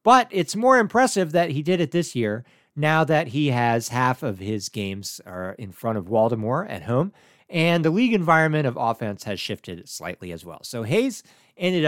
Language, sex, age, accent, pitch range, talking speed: English, male, 40-59, American, 110-165 Hz, 195 wpm